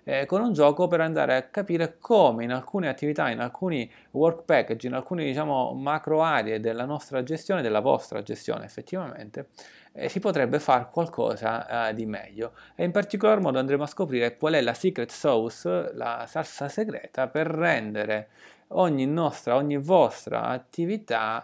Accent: native